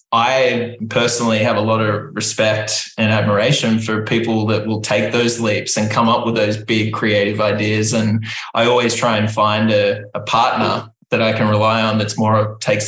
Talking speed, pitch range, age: 190 wpm, 110-120 Hz, 20-39